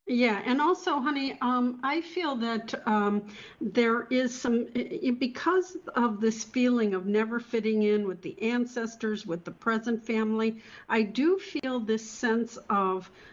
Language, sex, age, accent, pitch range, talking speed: English, female, 60-79, American, 205-250 Hz, 150 wpm